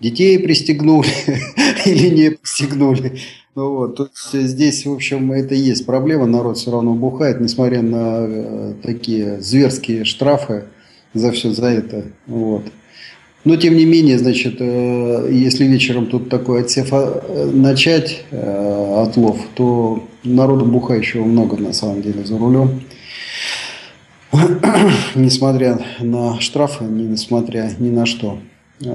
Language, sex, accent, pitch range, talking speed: Russian, male, native, 120-150 Hz, 125 wpm